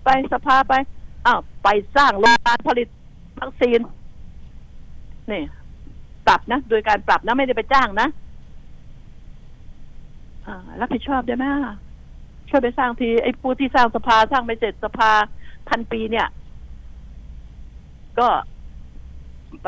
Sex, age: female, 60-79